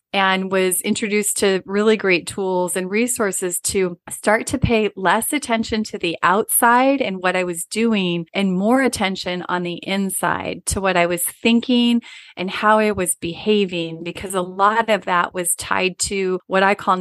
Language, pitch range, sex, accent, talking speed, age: English, 180-215 Hz, female, American, 175 wpm, 30-49